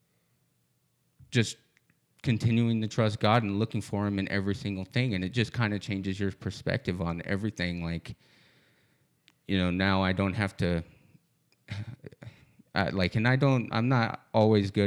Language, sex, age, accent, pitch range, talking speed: English, male, 30-49, American, 90-110 Hz, 160 wpm